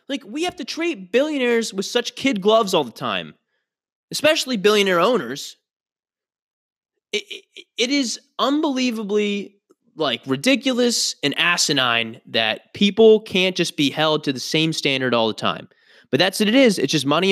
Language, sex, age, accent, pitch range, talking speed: English, male, 20-39, American, 135-225 Hz, 160 wpm